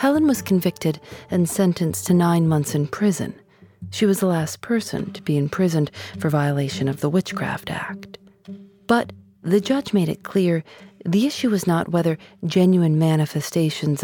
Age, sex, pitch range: 40-59, female, 145-195 Hz